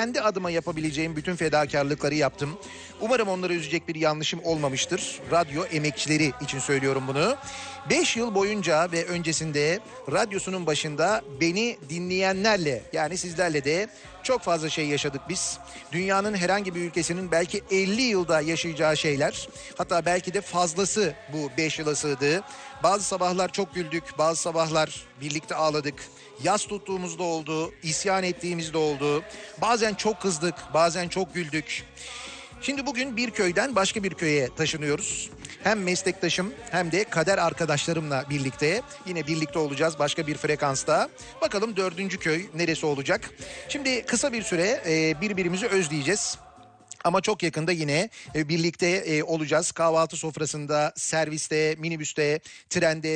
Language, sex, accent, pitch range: Turkish, male, native, 150-190 Hz